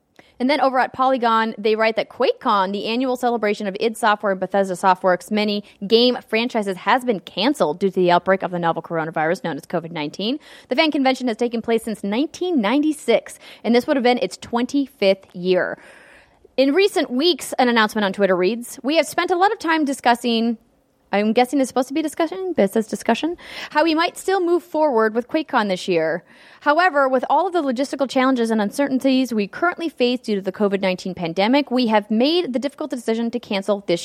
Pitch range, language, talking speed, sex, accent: 200-275 Hz, English, 200 wpm, female, American